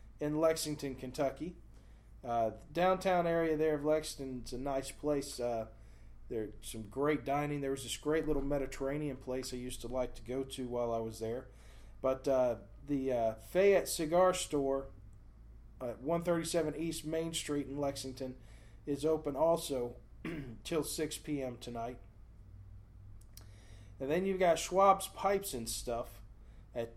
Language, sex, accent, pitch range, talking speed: English, male, American, 115-155 Hz, 145 wpm